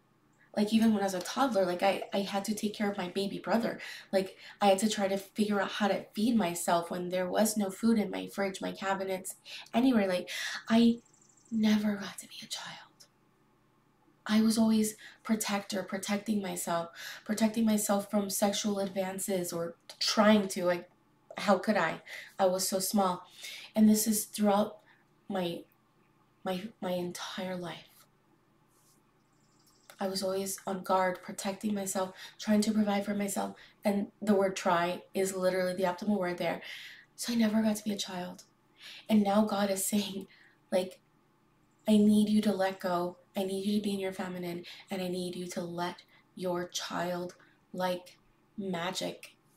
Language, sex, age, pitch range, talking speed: English, female, 20-39, 185-215 Hz, 170 wpm